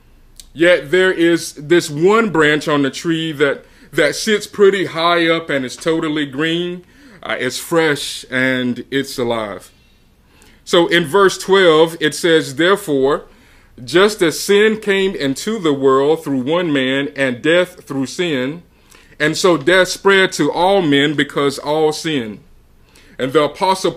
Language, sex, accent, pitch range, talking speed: English, male, American, 145-185 Hz, 150 wpm